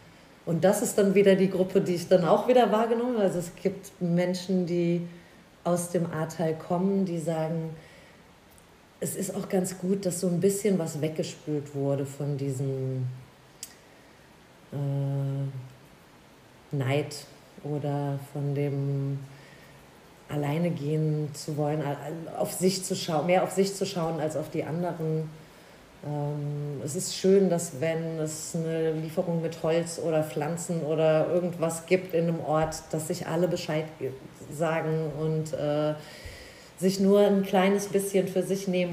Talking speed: 145 wpm